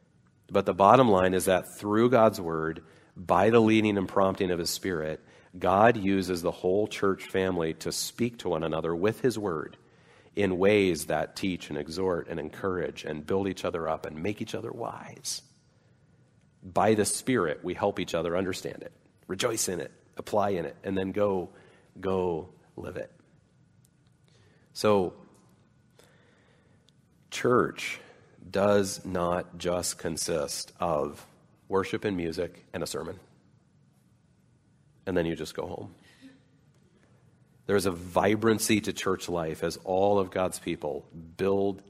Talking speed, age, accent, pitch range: 145 wpm, 40-59, American, 90-105 Hz